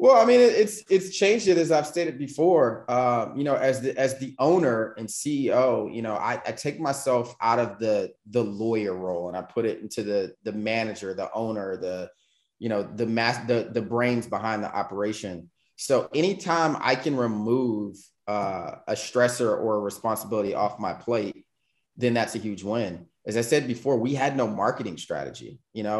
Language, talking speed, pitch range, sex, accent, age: English, 195 wpm, 110-145 Hz, male, American, 20-39